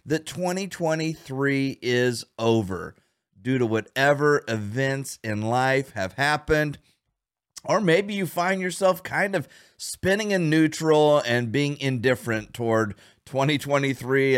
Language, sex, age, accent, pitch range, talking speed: English, male, 40-59, American, 125-165 Hz, 115 wpm